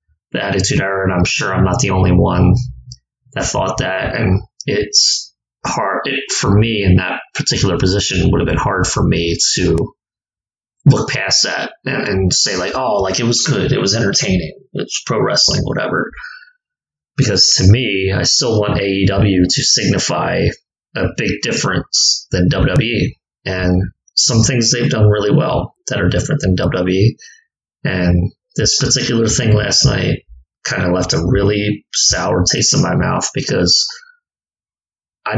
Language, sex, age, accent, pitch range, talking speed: English, male, 30-49, American, 95-130 Hz, 160 wpm